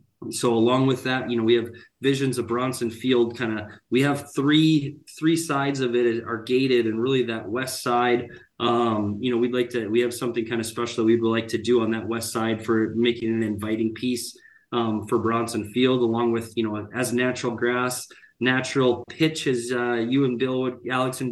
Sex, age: male, 20-39